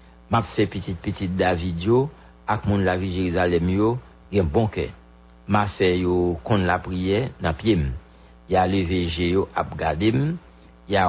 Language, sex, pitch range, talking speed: English, male, 80-110 Hz, 140 wpm